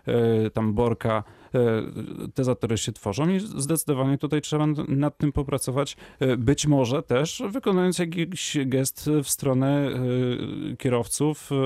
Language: Polish